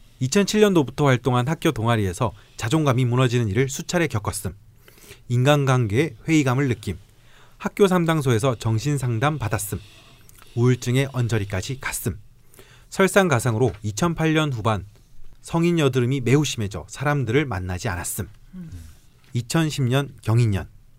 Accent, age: native, 40-59